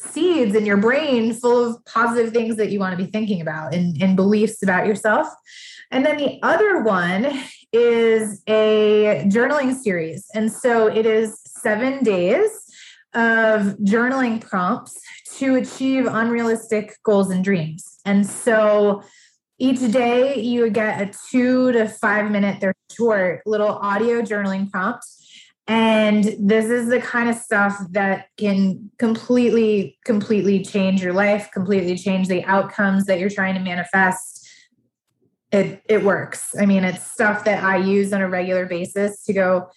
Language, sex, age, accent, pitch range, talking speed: English, female, 20-39, American, 195-235 Hz, 150 wpm